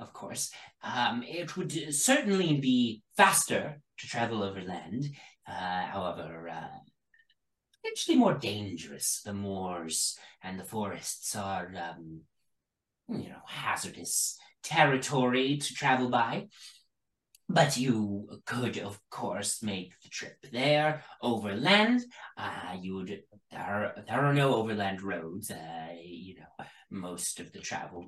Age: 30-49